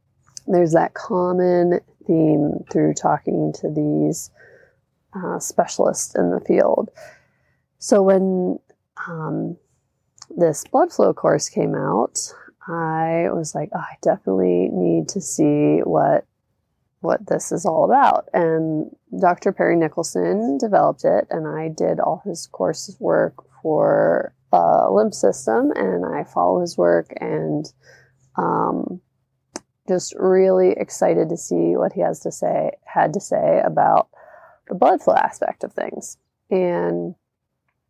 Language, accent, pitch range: English, American, 130-195 Hz